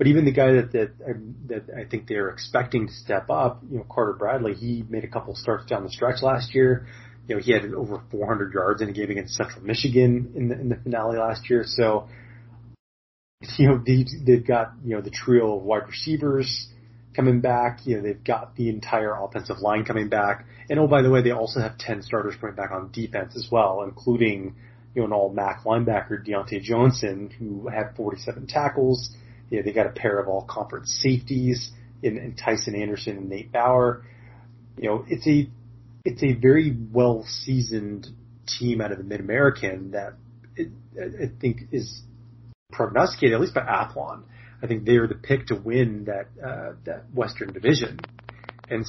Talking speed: 190 wpm